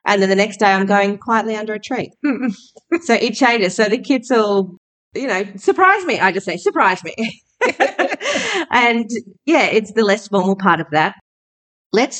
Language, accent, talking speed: English, Australian, 180 wpm